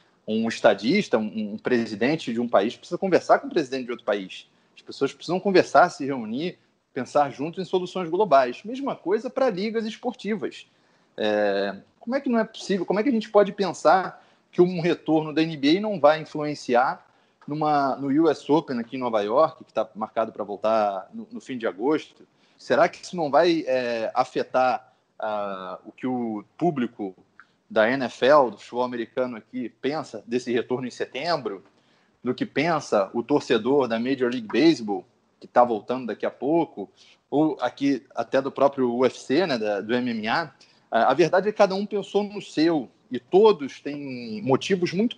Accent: Brazilian